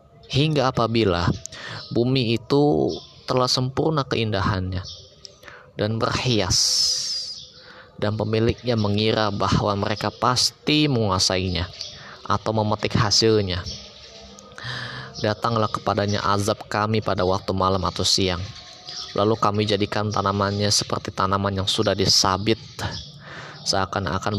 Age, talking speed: 20-39, 95 wpm